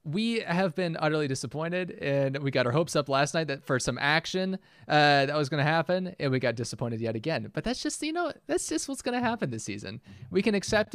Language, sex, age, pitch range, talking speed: English, male, 20-39, 120-165 Hz, 245 wpm